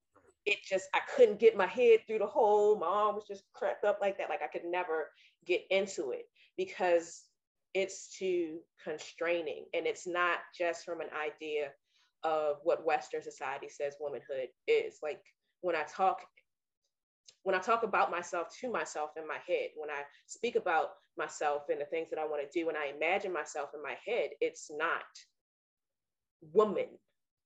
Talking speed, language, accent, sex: 170 wpm, English, American, female